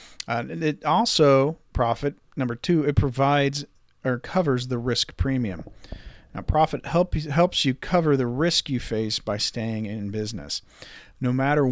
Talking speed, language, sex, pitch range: 150 wpm, English, male, 110-140 Hz